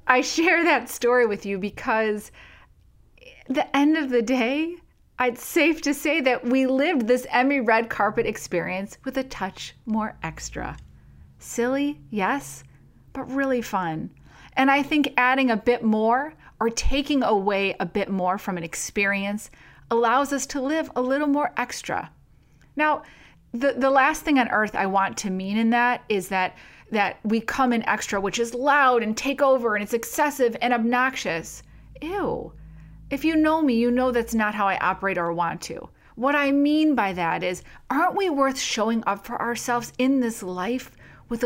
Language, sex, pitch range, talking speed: English, female, 205-275 Hz, 175 wpm